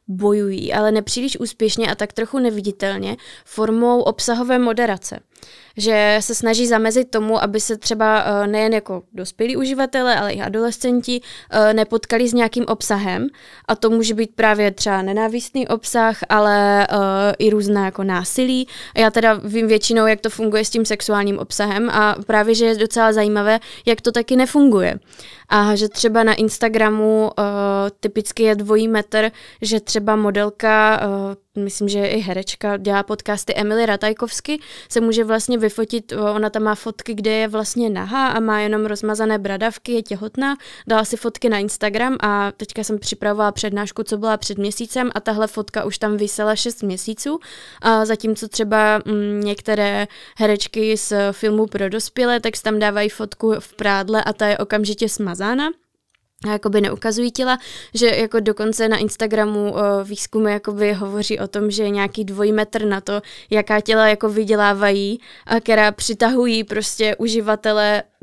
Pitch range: 210-225 Hz